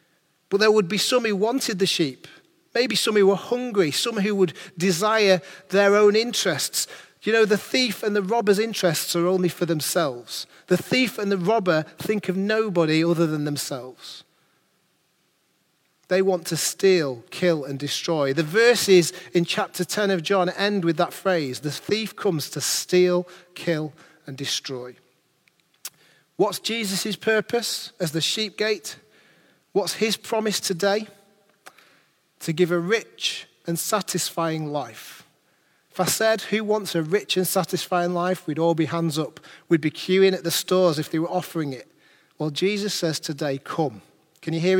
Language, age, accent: English, 40-59, British